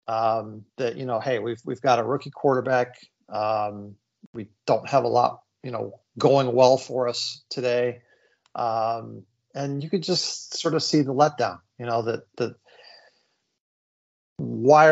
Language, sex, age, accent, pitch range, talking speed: English, male, 40-59, American, 115-145 Hz, 155 wpm